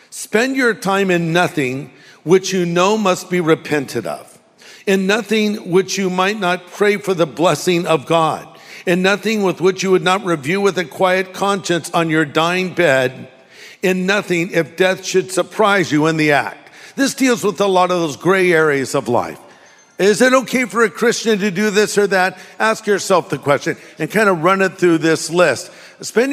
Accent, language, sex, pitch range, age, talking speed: American, English, male, 180-210 Hz, 50-69, 195 wpm